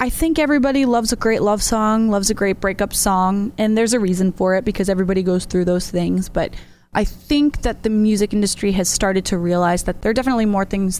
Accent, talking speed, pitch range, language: American, 230 wpm, 175-210 Hz, English